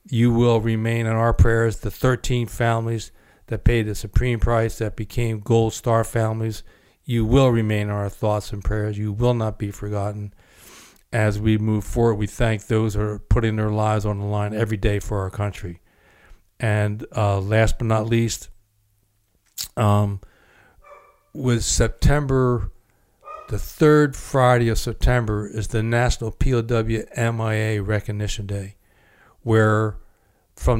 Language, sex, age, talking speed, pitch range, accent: English, male, 60-79, 145 wpm, 105-120 Hz, American